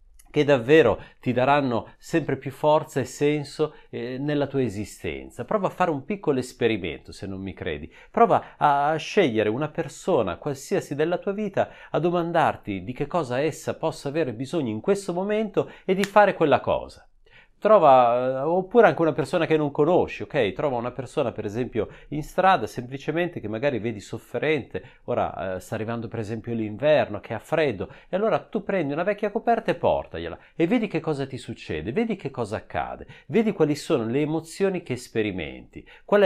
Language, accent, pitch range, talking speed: Italian, native, 110-170 Hz, 175 wpm